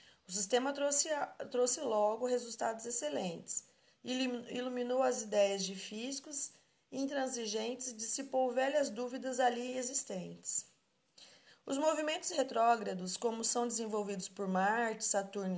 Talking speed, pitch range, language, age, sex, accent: 110 wpm, 200-255 Hz, Portuguese, 20-39, female, Brazilian